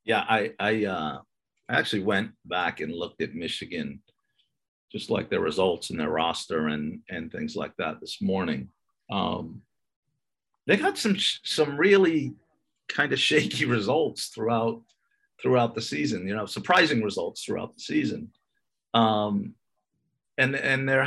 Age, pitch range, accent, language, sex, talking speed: 50-69, 105-135 Hz, American, English, male, 150 wpm